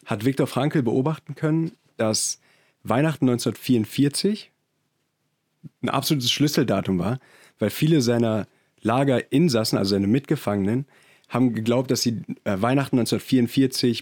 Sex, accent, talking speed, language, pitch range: male, German, 105 wpm, German, 110-145 Hz